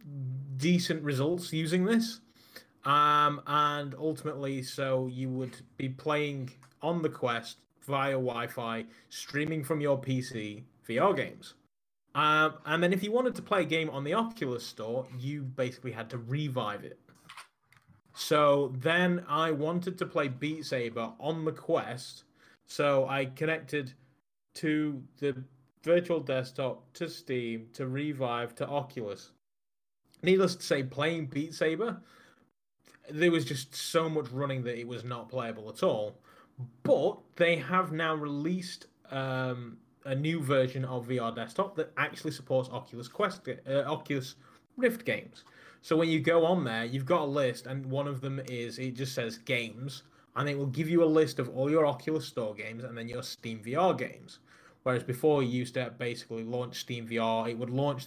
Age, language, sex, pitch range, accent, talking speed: 20-39, English, male, 125-155 Hz, British, 160 wpm